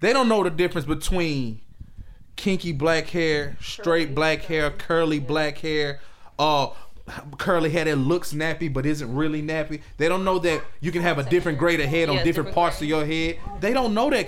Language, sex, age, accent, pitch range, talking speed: English, male, 20-39, American, 130-190 Hz, 200 wpm